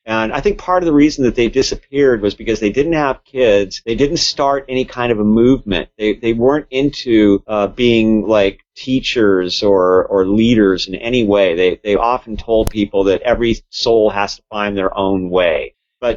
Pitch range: 100-130 Hz